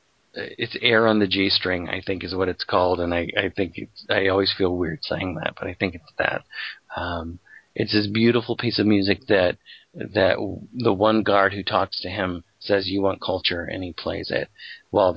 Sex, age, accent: male, 40-59, American